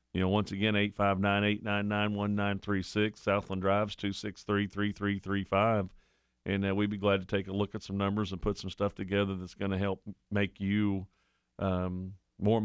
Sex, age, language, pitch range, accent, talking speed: male, 50-69, English, 90-105 Hz, American, 200 wpm